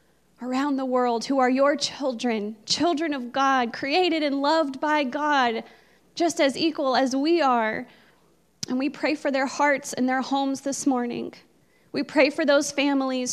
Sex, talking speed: female, 165 wpm